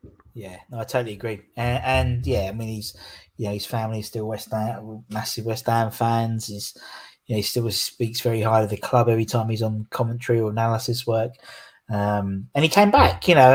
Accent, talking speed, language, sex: British, 220 wpm, English, male